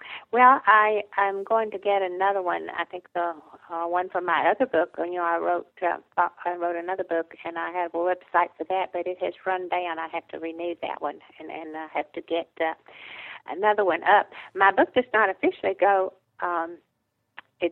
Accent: American